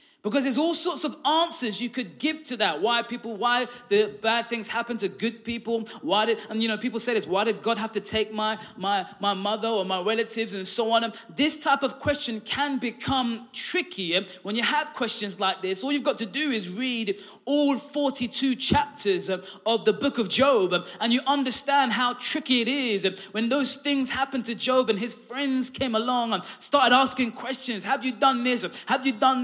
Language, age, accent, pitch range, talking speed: English, 20-39, British, 205-265 Hz, 210 wpm